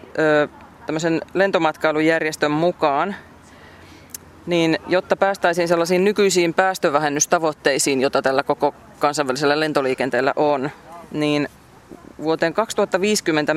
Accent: native